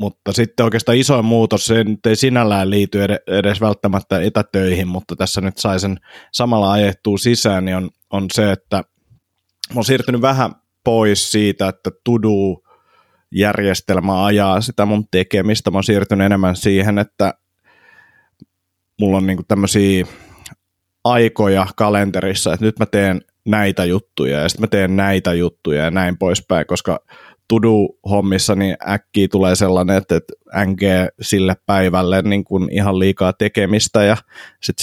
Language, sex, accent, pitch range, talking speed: Finnish, male, native, 95-105 Hz, 140 wpm